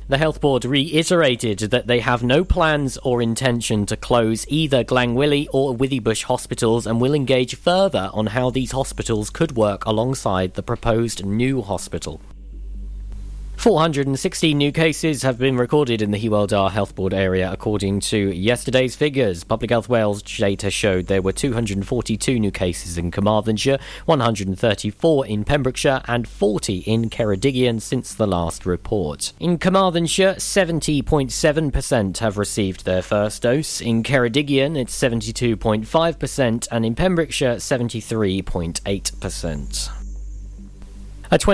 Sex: male